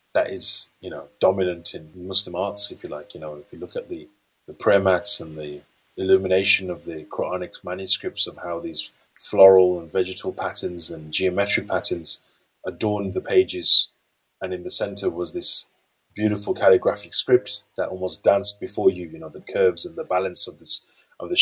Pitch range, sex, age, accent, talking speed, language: 100-155 Hz, male, 30-49, British, 180 wpm, English